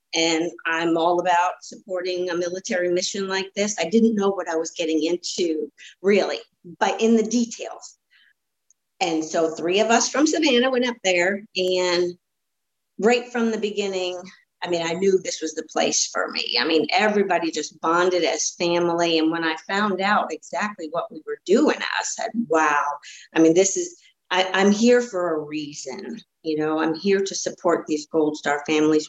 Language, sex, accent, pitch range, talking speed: English, female, American, 160-210 Hz, 180 wpm